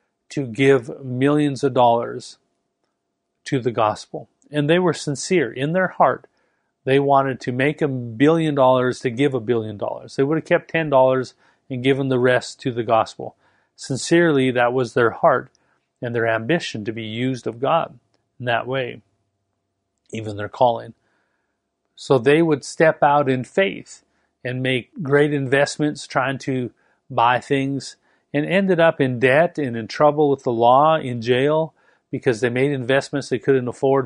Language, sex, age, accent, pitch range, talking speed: English, male, 40-59, American, 125-155 Hz, 165 wpm